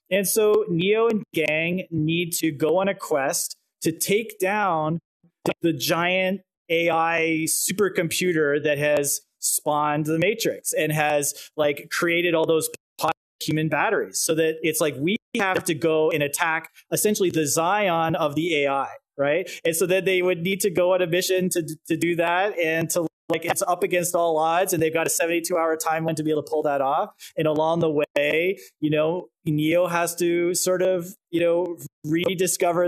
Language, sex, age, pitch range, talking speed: English, male, 20-39, 160-185 Hz, 180 wpm